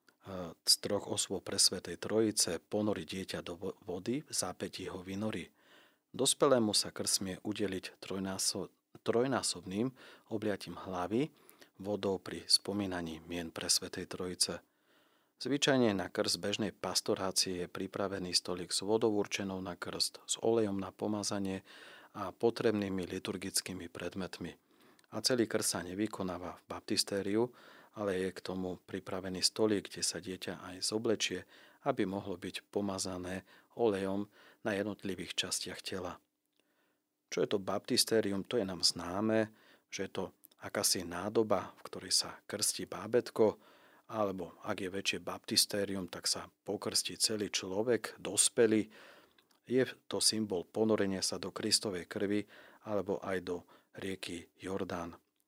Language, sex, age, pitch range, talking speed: Slovak, male, 40-59, 95-105 Hz, 130 wpm